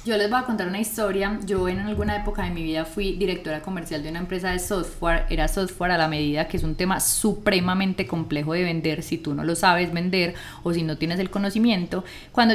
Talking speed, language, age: 230 wpm, Spanish, 20-39